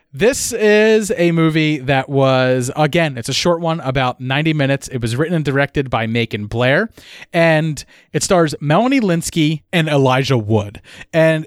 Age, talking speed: 30-49, 160 wpm